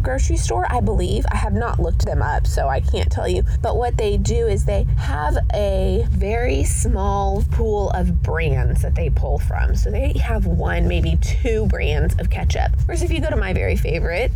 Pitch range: 70-90 Hz